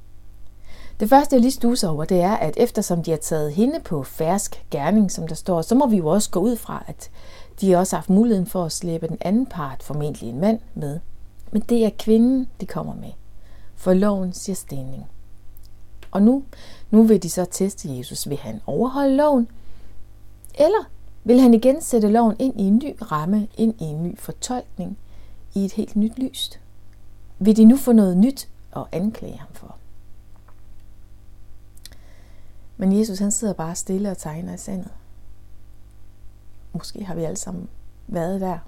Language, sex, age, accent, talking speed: Danish, female, 60-79, native, 180 wpm